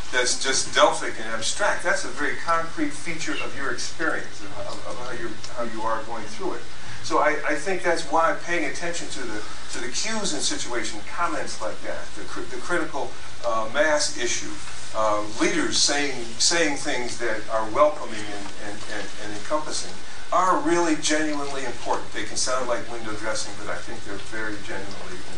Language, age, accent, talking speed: English, 40-59, American, 180 wpm